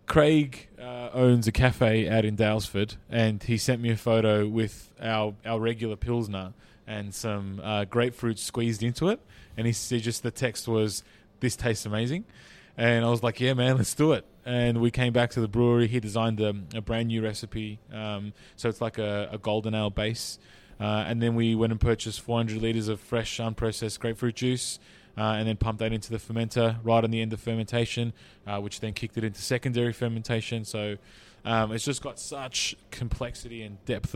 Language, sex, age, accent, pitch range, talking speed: English, male, 20-39, Australian, 110-120 Hz, 200 wpm